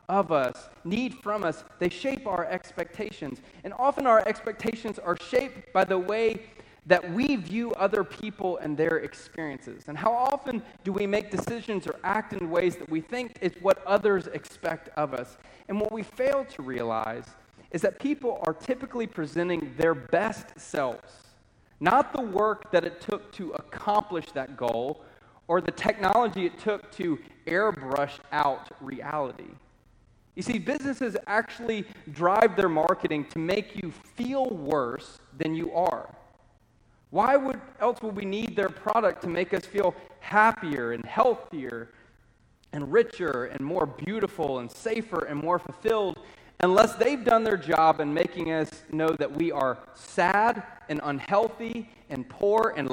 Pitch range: 160-220 Hz